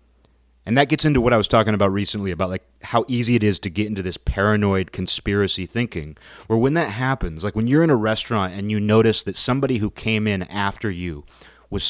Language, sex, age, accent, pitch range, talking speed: English, male, 30-49, American, 80-110 Hz, 220 wpm